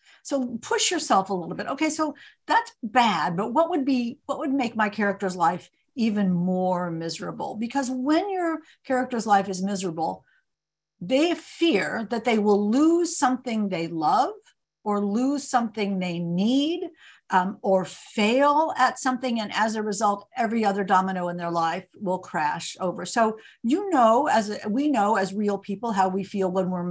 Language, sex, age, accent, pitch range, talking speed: English, female, 50-69, American, 190-260 Hz, 170 wpm